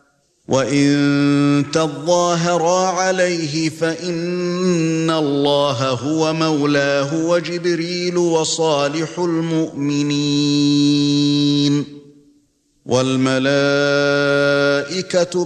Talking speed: 45 wpm